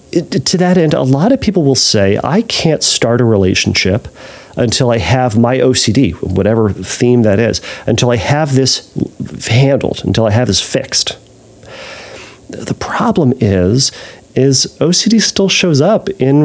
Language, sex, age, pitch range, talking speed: English, male, 40-59, 100-135 Hz, 155 wpm